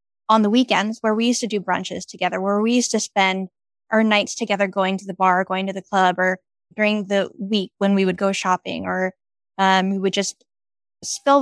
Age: 10-29